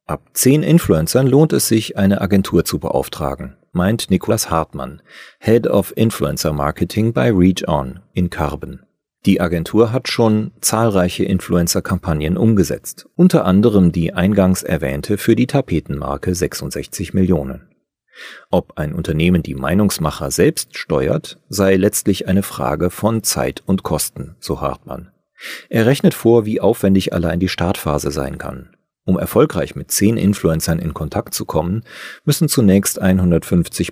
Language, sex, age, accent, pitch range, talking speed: German, male, 40-59, German, 85-105 Hz, 135 wpm